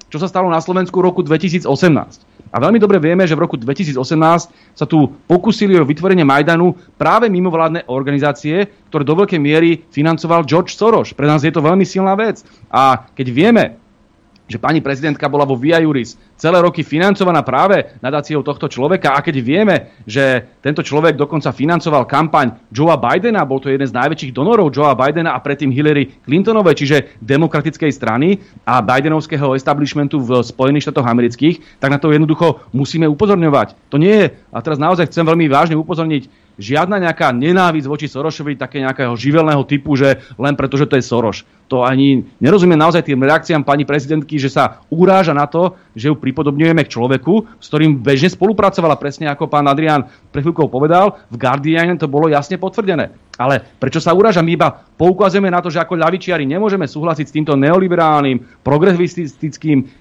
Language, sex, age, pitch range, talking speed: Slovak, male, 30-49, 140-170 Hz, 175 wpm